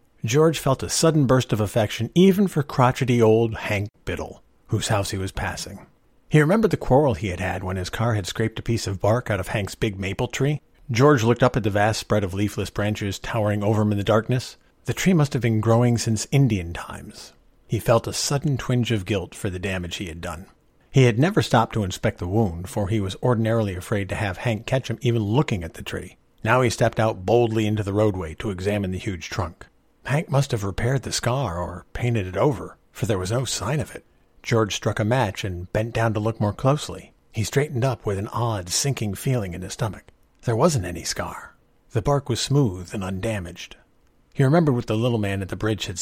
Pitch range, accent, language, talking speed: 100-125 Hz, American, English, 225 wpm